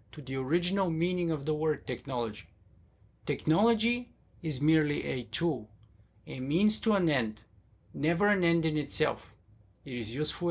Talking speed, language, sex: 150 wpm, English, male